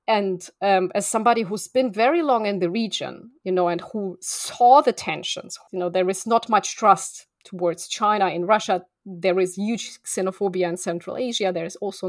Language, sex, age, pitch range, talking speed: English, female, 30-49, 180-230 Hz, 195 wpm